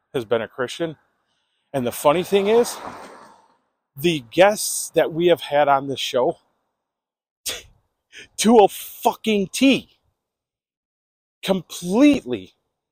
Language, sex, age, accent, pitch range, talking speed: English, male, 40-59, American, 120-175 Hz, 105 wpm